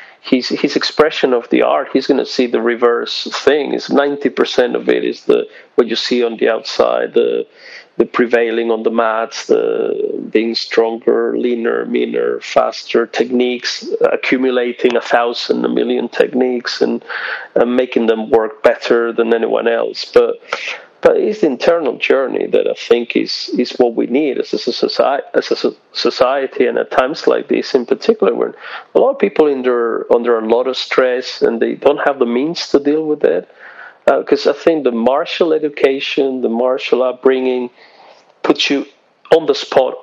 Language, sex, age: English, male, 40-59